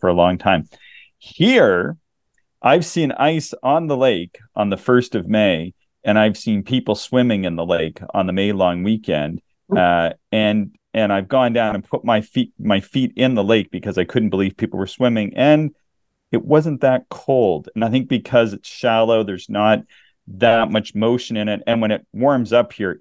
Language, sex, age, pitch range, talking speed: English, male, 40-59, 95-115 Hz, 195 wpm